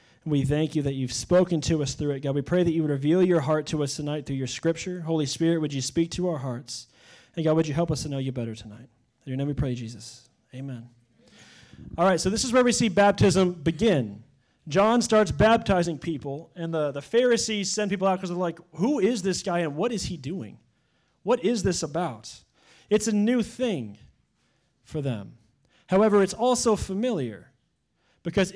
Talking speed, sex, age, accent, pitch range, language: 210 wpm, male, 30-49, American, 150-210 Hz, English